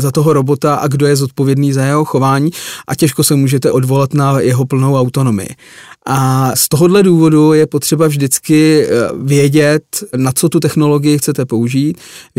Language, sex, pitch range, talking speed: Czech, male, 140-155 Hz, 165 wpm